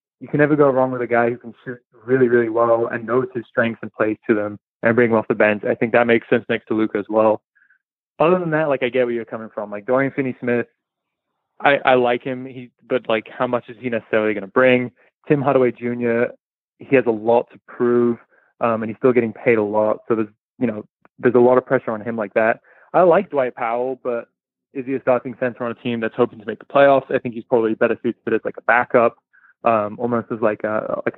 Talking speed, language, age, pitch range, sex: 250 wpm, English, 20-39, 115-130 Hz, male